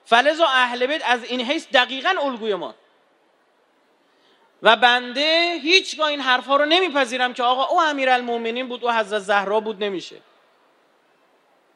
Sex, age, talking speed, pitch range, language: male, 40-59, 135 wpm, 260-320 Hz, Persian